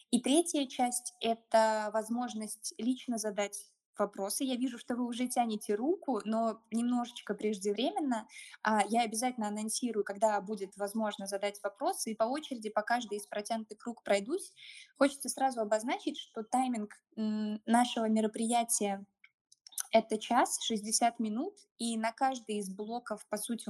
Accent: native